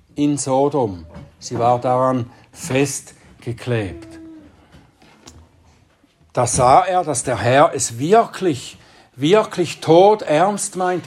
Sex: male